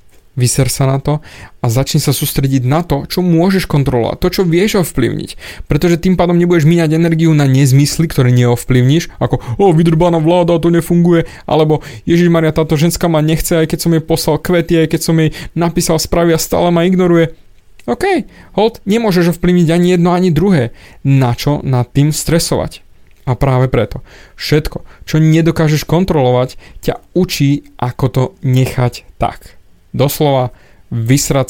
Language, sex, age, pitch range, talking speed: Slovak, male, 20-39, 125-165 Hz, 160 wpm